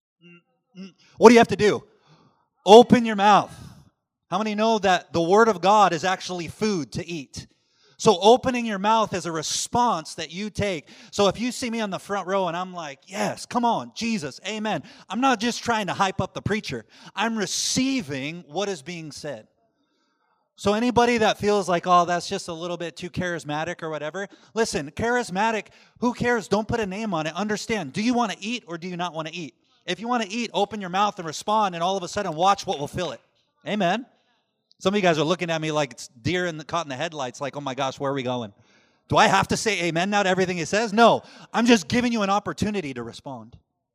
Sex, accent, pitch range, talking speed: male, American, 160-220 Hz, 225 wpm